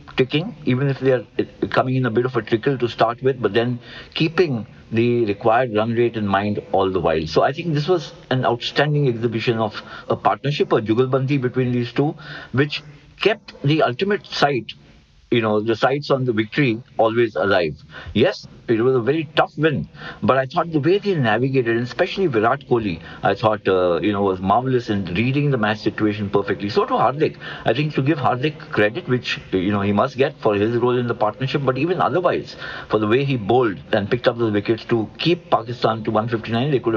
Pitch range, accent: 110-135 Hz, Indian